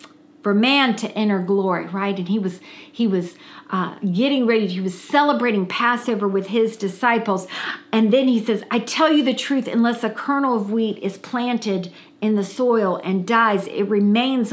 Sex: female